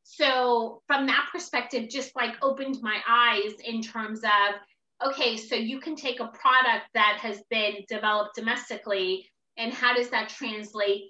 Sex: female